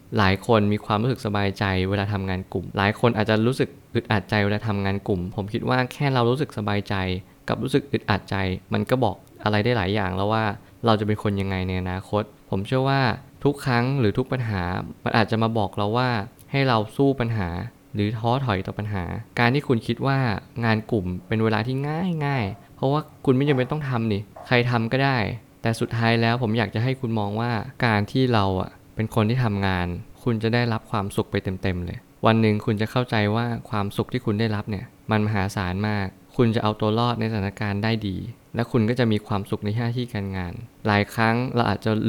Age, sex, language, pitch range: 20-39, male, Thai, 100-120 Hz